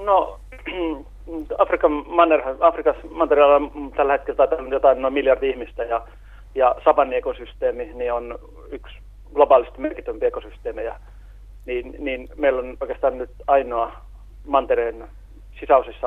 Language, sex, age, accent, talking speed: Finnish, male, 40-59, native, 110 wpm